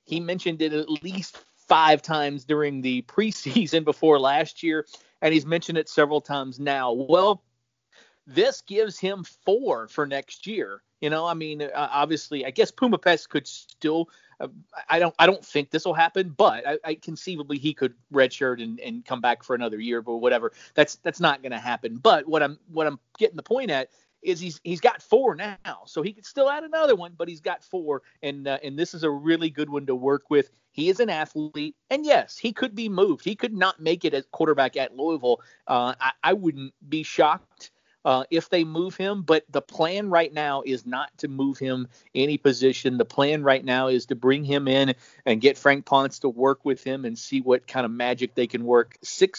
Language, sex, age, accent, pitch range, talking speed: English, male, 40-59, American, 135-170 Hz, 215 wpm